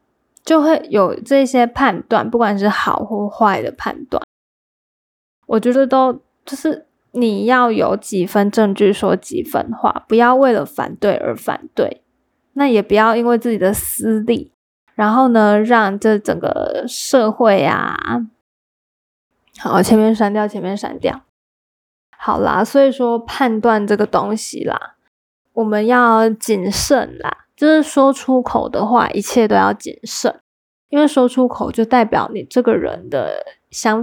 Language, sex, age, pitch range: Chinese, female, 10-29, 215-260 Hz